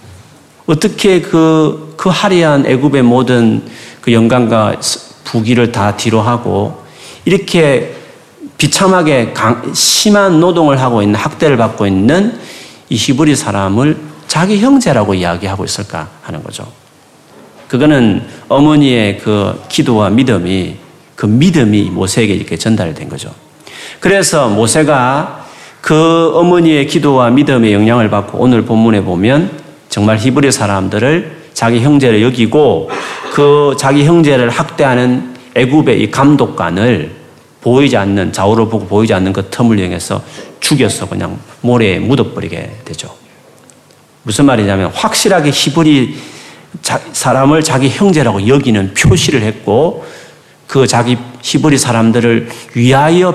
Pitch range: 110-155 Hz